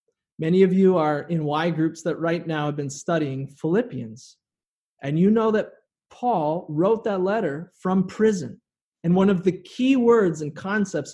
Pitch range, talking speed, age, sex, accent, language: 150-190 Hz, 170 wpm, 30-49, male, American, English